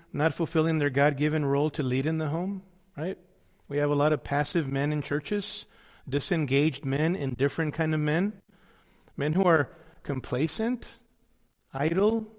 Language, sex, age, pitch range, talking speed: English, male, 40-59, 140-185 Hz, 155 wpm